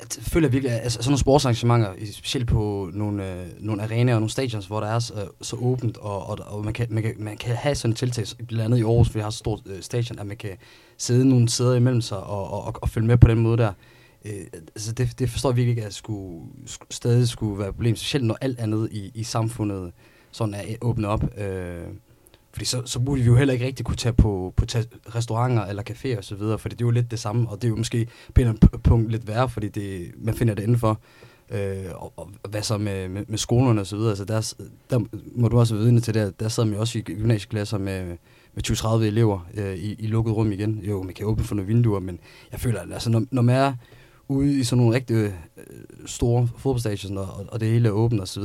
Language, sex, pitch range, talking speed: Danish, male, 105-120 Hz, 245 wpm